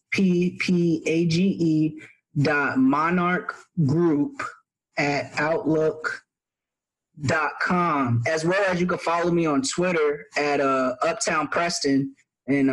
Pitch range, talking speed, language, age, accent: 155-190 Hz, 115 wpm, English, 20-39, American